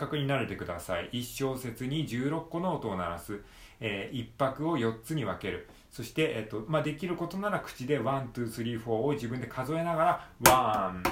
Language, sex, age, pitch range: Japanese, male, 40-59, 105-150 Hz